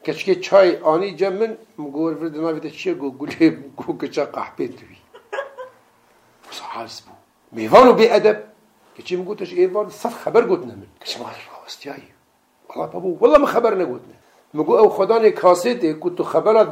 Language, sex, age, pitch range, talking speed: Turkish, male, 60-79, 190-285 Hz, 70 wpm